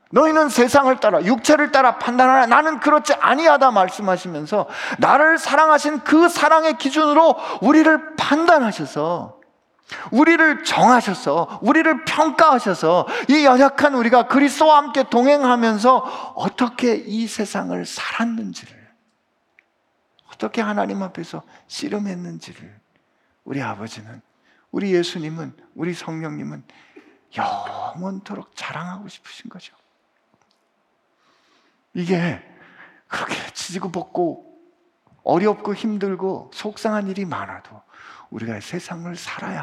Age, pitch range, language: 40-59, 175-290 Hz, Korean